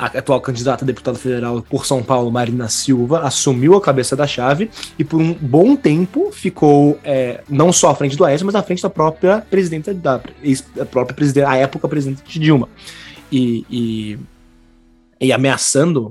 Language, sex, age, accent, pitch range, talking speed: Portuguese, male, 20-39, Brazilian, 115-140 Hz, 185 wpm